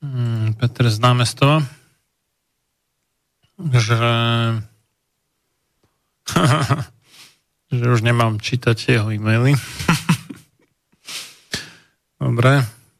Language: Slovak